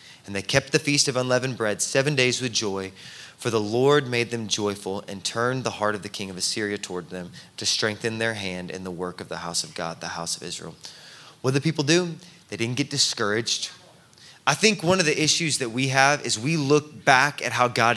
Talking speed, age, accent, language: 235 wpm, 20-39, American, English